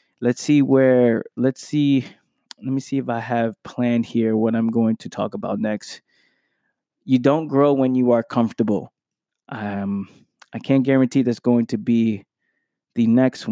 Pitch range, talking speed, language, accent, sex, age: 110-130 Hz, 165 wpm, English, American, male, 20-39